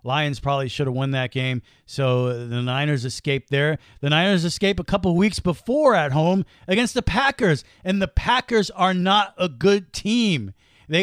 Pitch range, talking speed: 145-195 Hz, 180 wpm